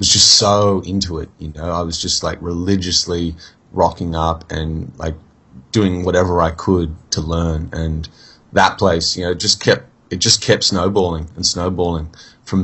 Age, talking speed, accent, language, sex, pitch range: 30-49, 170 wpm, Australian, English, male, 80-95 Hz